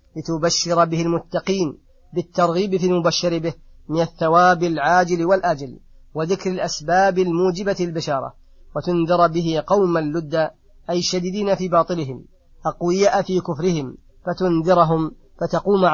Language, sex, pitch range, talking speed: Arabic, female, 160-180 Hz, 105 wpm